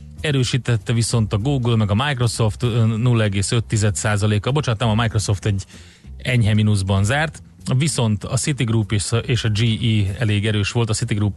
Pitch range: 100-120 Hz